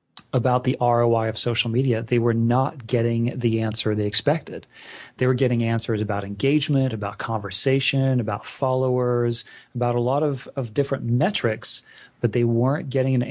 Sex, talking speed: male, 160 wpm